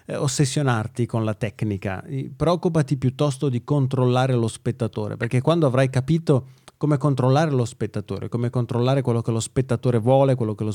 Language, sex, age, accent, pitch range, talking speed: Italian, male, 30-49, native, 120-140 Hz, 155 wpm